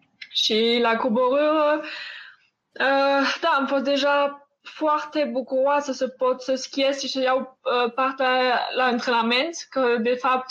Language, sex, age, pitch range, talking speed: Romanian, female, 20-39, 240-275 Hz, 135 wpm